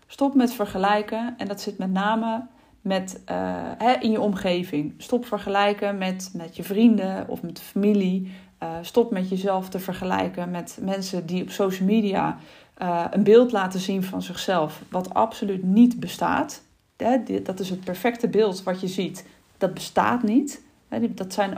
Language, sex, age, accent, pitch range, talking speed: Dutch, female, 40-59, Dutch, 185-225 Hz, 160 wpm